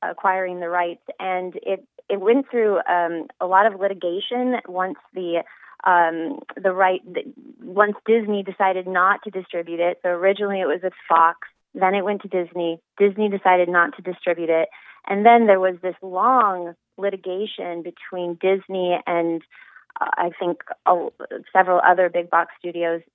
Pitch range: 170-200 Hz